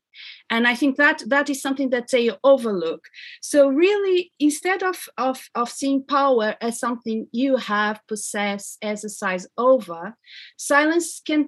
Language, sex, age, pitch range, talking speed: English, female, 30-49, 210-265 Hz, 140 wpm